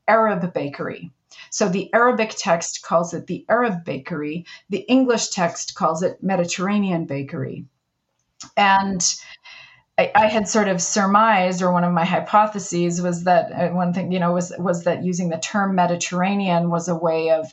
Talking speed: 160 wpm